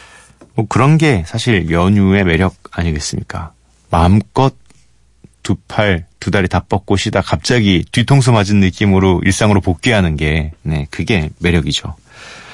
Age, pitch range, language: 40-59, 85-120 Hz, Korean